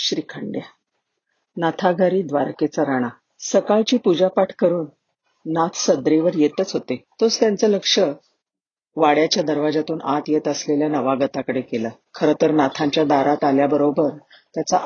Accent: native